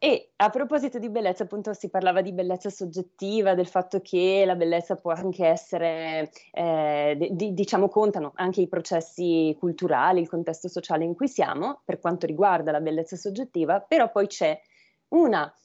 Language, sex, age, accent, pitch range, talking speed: Italian, female, 20-39, native, 175-225 Hz, 165 wpm